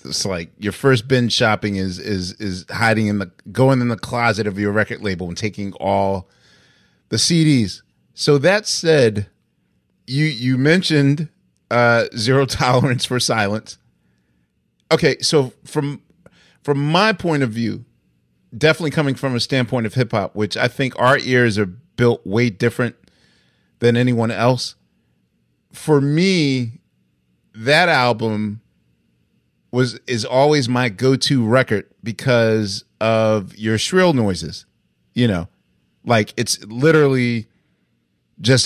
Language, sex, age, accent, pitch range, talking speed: English, male, 30-49, American, 100-130 Hz, 130 wpm